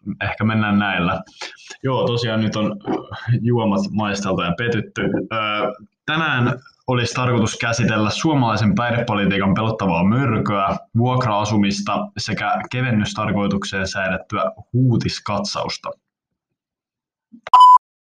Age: 20-39